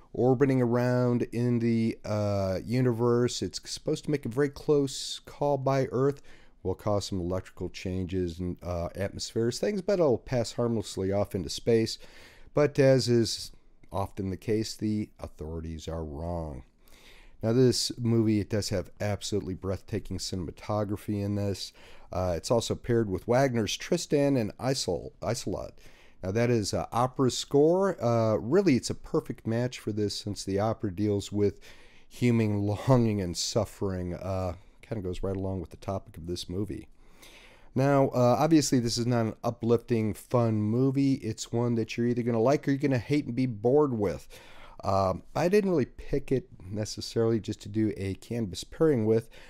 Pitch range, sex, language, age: 95-125 Hz, male, English, 40-59